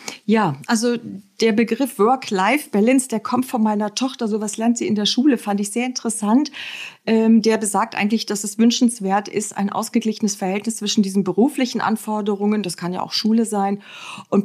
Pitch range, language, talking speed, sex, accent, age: 200-225 Hz, German, 170 wpm, female, German, 40-59